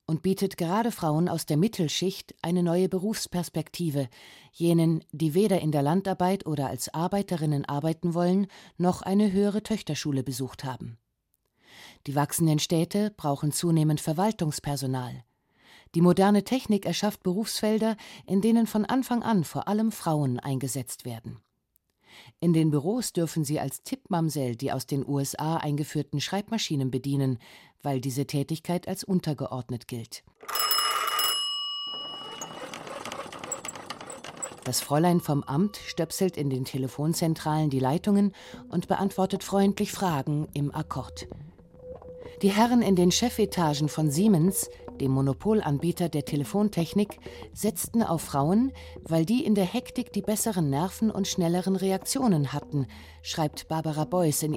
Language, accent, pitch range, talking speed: German, German, 145-200 Hz, 125 wpm